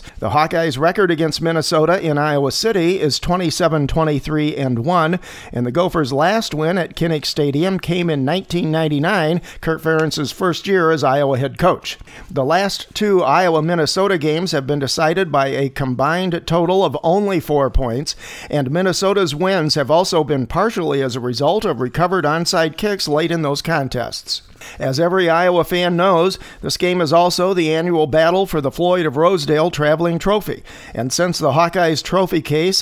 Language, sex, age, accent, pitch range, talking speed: English, male, 50-69, American, 145-180 Hz, 160 wpm